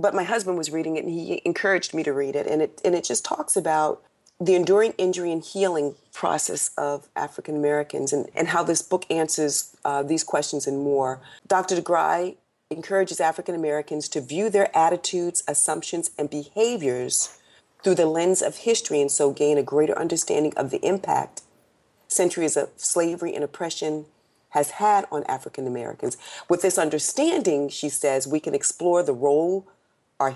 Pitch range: 140-175 Hz